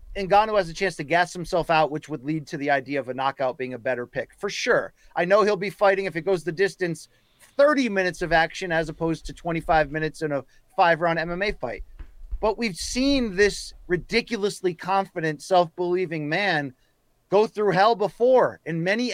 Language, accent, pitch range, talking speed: English, American, 160-205 Hz, 195 wpm